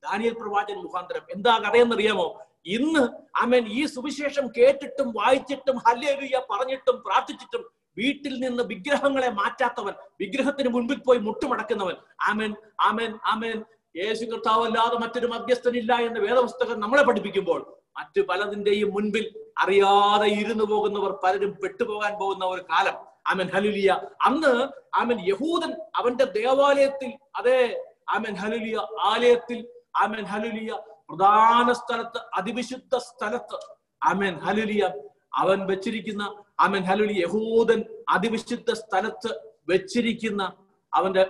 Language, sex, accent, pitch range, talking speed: Malayalam, male, native, 200-250 Hz, 100 wpm